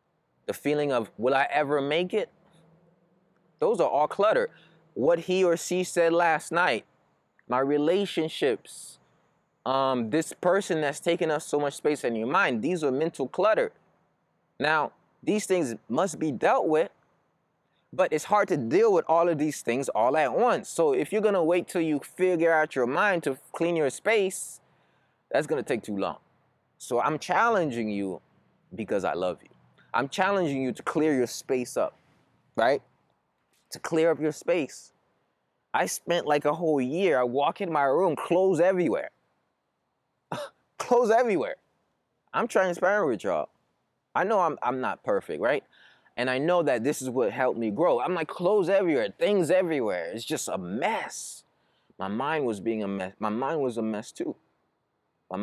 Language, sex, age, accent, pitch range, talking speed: English, male, 20-39, American, 135-180 Hz, 175 wpm